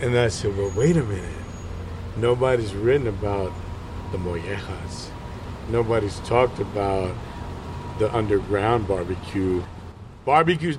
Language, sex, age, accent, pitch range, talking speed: English, male, 50-69, American, 90-120 Hz, 105 wpm